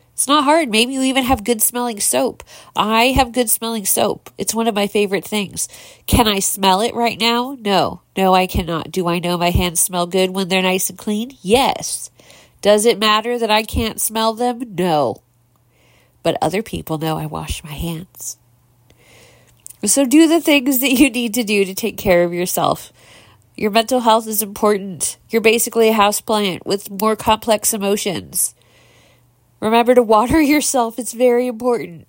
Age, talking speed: 40-59, 180 wpm